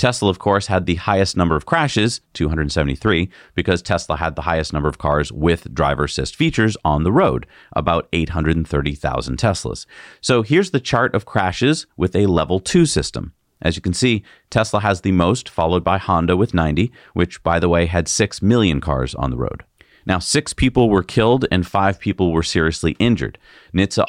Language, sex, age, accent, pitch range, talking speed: English, male, 40-59, American, 80-105 Hz, 185 wpm